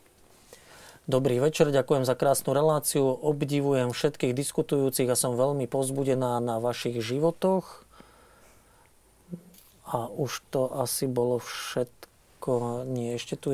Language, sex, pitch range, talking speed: Slovak, male, 125-140 Hz, 110 wpm